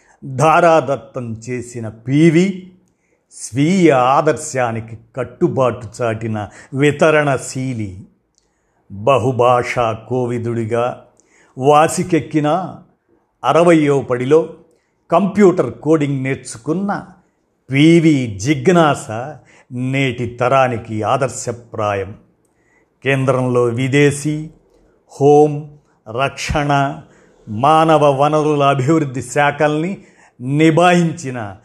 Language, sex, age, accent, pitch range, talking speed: Telugu, male, 50-69, native, 120-155 Hz, 55 wpm